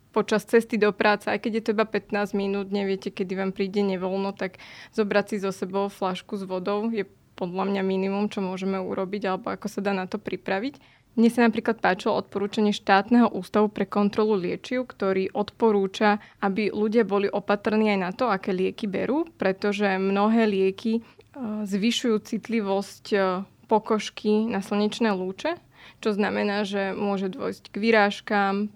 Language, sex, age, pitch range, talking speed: Slovak, female, 20-39, 195-215 Hz, 160 wpm